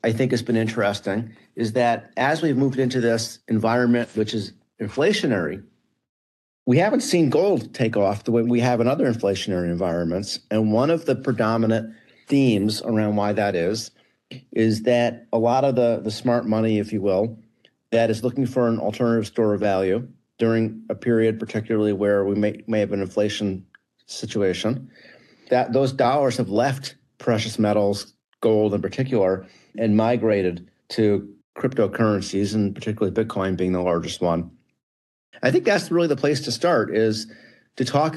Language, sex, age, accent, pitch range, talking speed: English, male, 40-59, American, 105-120 Hz, 165 wpm